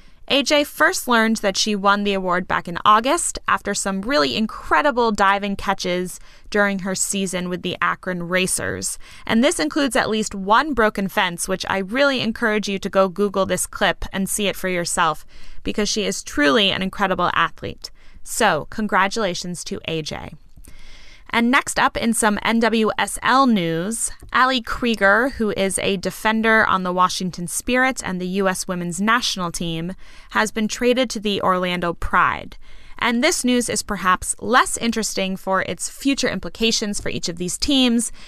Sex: female